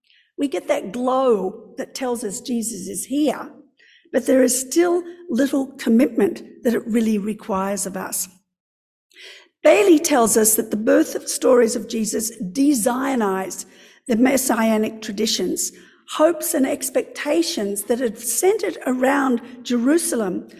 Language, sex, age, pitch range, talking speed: English, female, 60-79, 220-295 Hz, 130 wpm